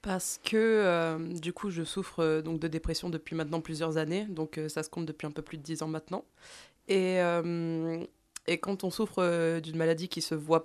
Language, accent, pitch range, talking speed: French, French, 155-175 Hz, 230 wpm